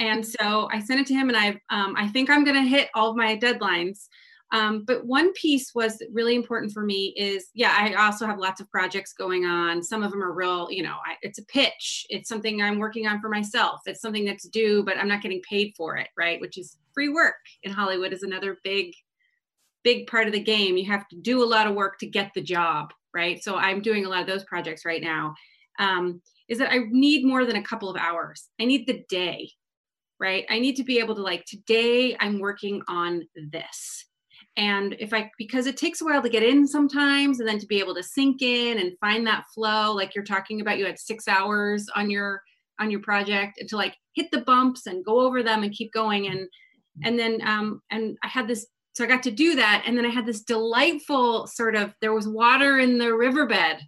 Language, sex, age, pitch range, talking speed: English, female, 30-49, 195-240 Hz, 235 wpm